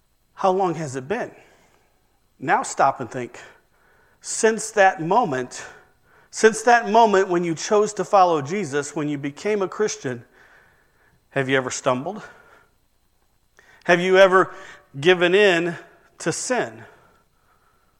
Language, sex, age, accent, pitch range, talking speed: English, male, 40-59, American, 170-230 Hz, 125 wpm